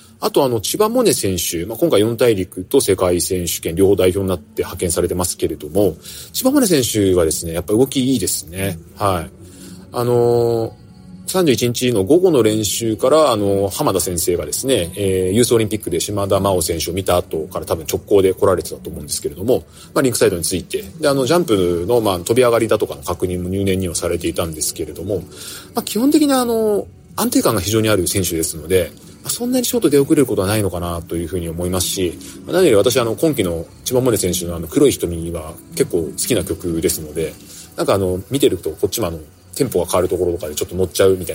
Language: Japanese